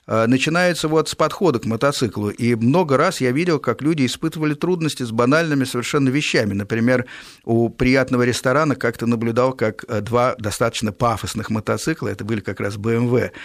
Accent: native